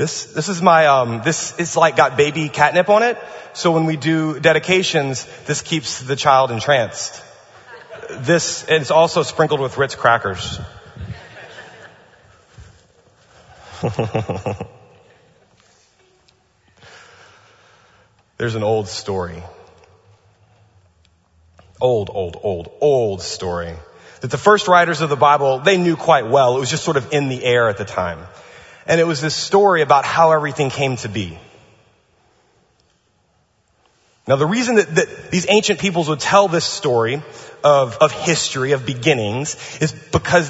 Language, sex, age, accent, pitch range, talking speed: English, male, 30-49, American, 115-160 Hz, 135 wpm